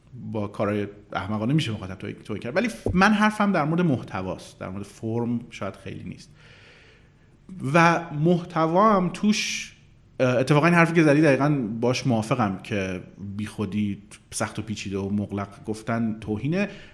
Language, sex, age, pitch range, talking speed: Persian, male, 40-59, 105-150 Hz, 140 wpm